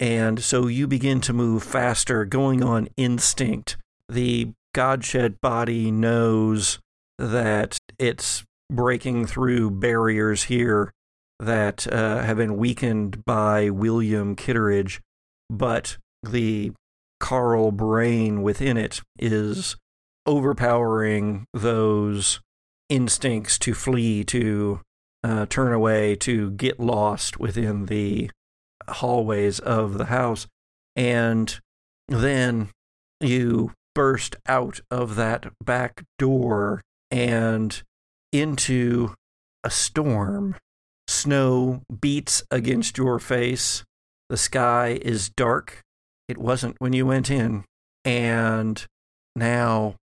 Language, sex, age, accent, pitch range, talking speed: English, male, 50-69, American, 105-125 Hz, 100 wpm